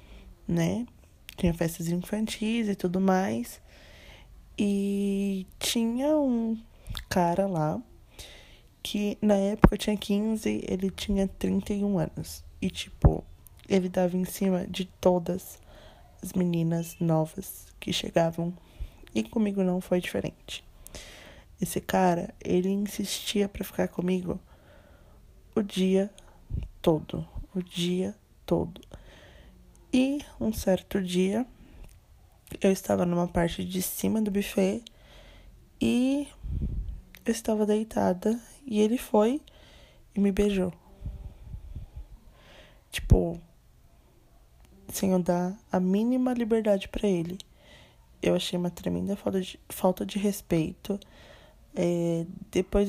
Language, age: Portuguese, 20-39